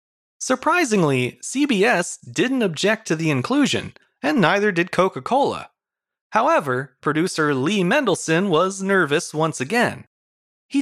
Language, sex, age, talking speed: English, male, 30-49, 110 wpm